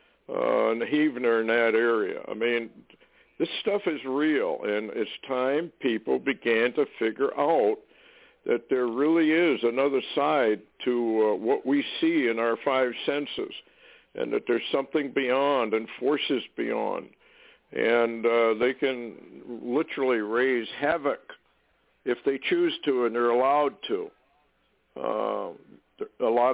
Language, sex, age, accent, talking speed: English, male, 60-79, American, 140 wpm